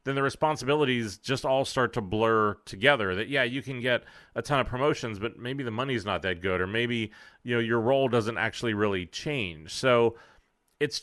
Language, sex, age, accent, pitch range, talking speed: English, male, 30-49, American, 105-130 Hz, 200 wpm